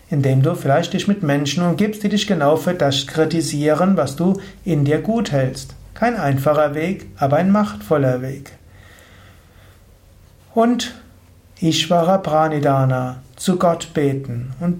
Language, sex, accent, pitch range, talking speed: German, male, German, 135-175 Hz, 135 wpm